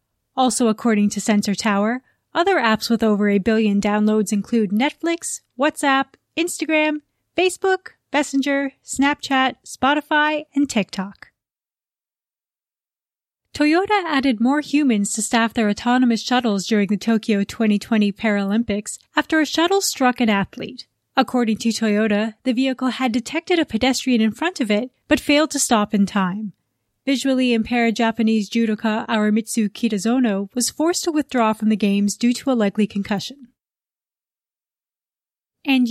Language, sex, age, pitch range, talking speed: English, female, 30-49, 215-270 Hz, 135 wpm